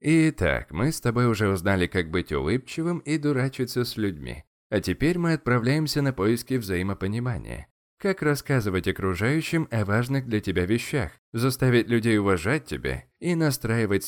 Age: 20-39